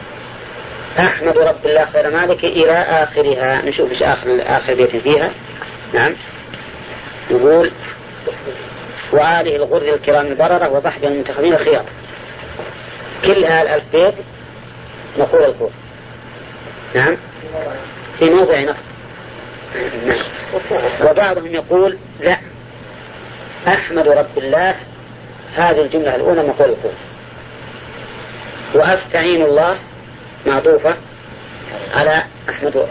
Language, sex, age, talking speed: Arabic, female, 40-59, 90 wpm